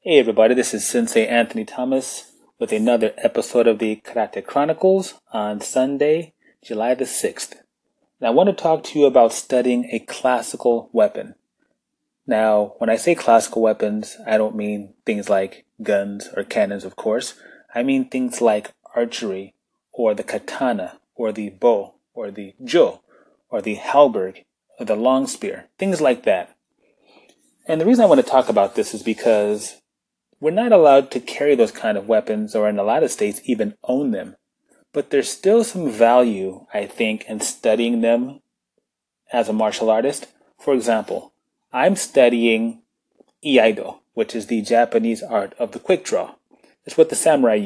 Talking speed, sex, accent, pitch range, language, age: 165 wpm, male, American, 105-140 Hz, English, 20-39